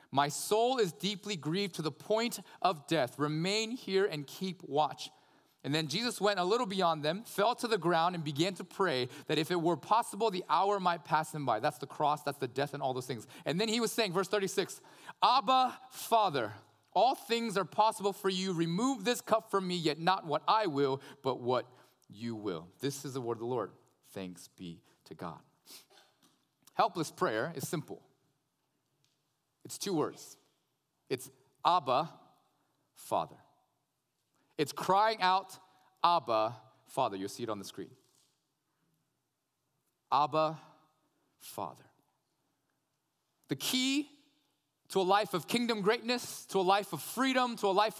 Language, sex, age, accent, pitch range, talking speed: English, male, 30-49, American, 145-220 Hz, 165 wpm